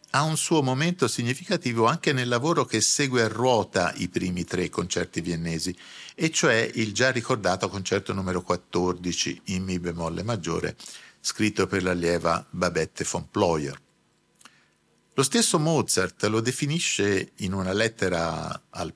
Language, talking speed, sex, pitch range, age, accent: Italian, 140 wpm, male, 90-135 Hz, 50-69, native